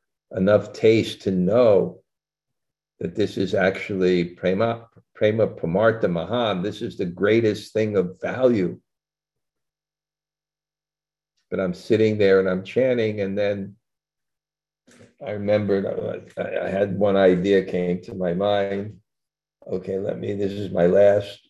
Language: English